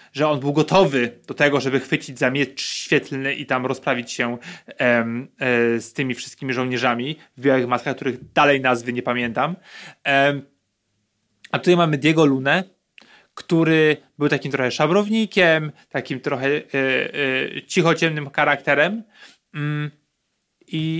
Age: 30-49